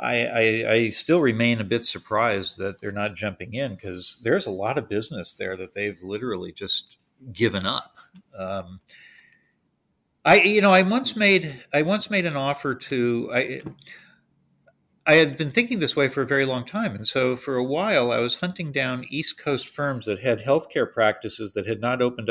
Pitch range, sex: 105-135 Hz, male